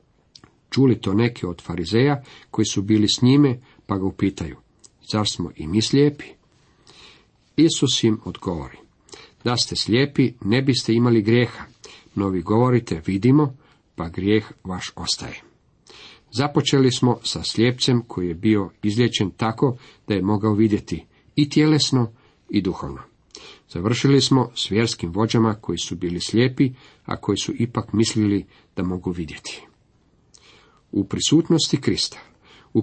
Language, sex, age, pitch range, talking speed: Croatian, male, 50-69, 100-130 Hz, 135 wpm